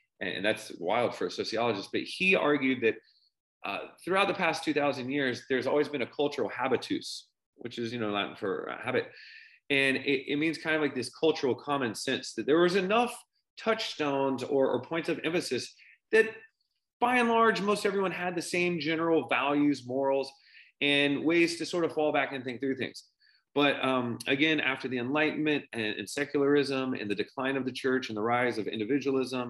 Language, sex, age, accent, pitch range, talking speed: English, male, 30-49, American, 115-155 Hz, 190 wpm